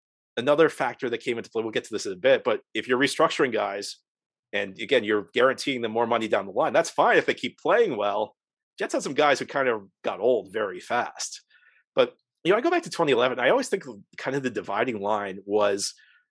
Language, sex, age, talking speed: English, male, 40-59, 230 wpm